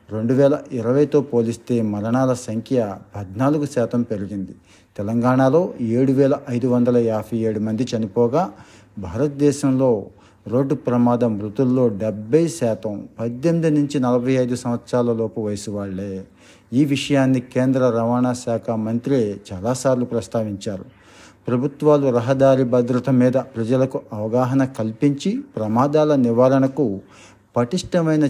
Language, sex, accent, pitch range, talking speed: Telugu, male, native, 110-135 Hz, 105 wpm